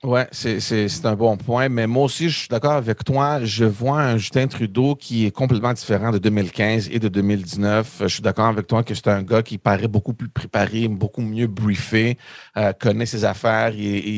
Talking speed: 215 wpm